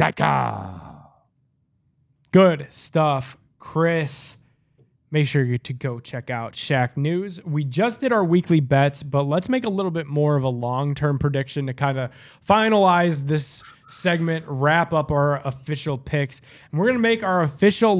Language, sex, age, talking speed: English, male, 20-39, 155 wpm